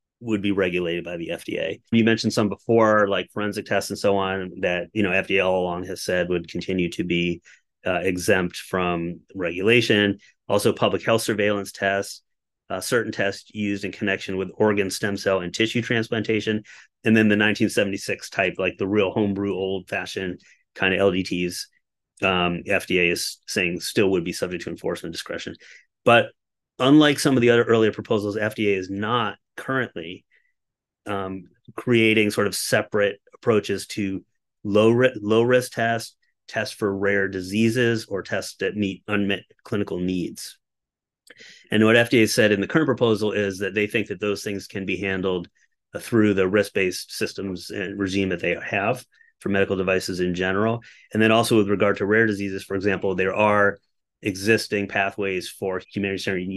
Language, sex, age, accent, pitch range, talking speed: English, male, 30-49, American, 95-110 Hz, 170 wpm